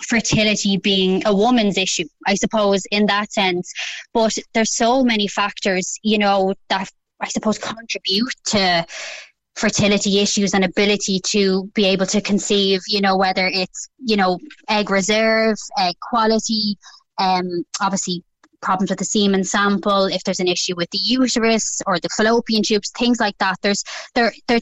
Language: English